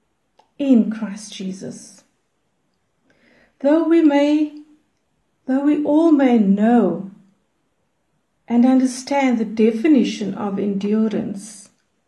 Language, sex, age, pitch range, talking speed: English, female, 60-79, 205-270 Hz, 85 wpm